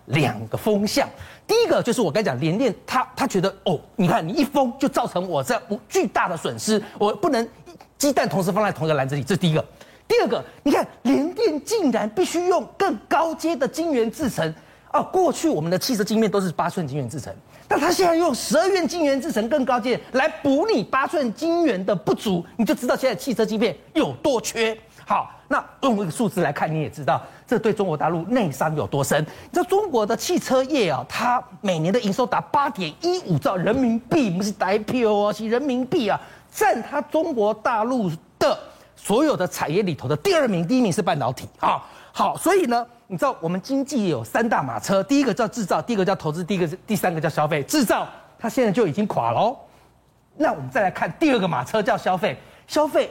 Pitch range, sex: 185-285 Hz, male